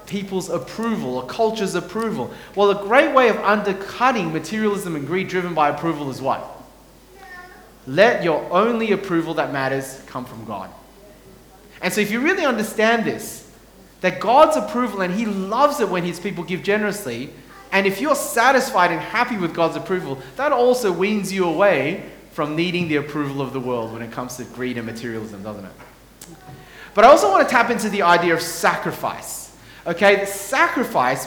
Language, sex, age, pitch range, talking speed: English, male, 30-49, 155-220 Hz, 175 wpm